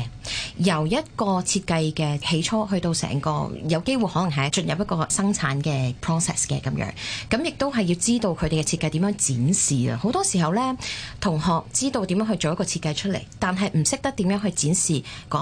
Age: 20-39